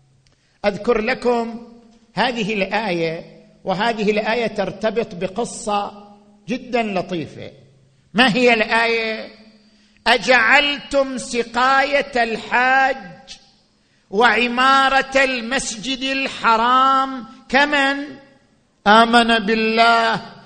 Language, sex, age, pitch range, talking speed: Arabic, male, 50-69, 200-255 Hz, 65 wpm